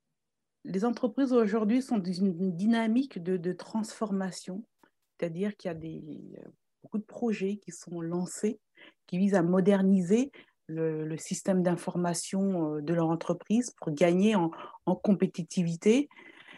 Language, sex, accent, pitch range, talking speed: French, female, French, 170-215 Hz, 135 wpm